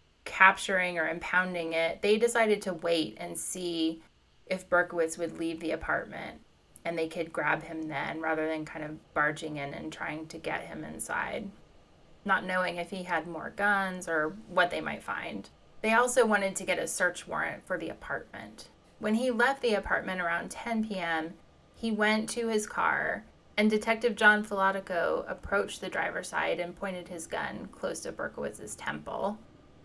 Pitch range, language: 165-210 Hz, English